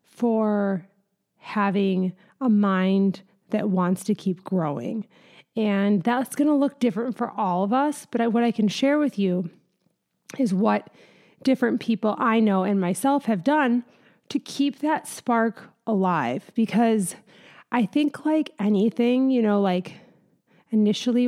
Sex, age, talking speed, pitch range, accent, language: female, 30-49, 140 wpm, 200-245 Hz, American, English